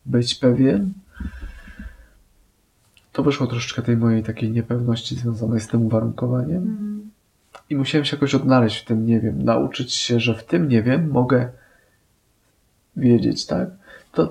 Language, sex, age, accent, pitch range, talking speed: Polish, male, 20-39, native, 115-135 Hz, 140 wpm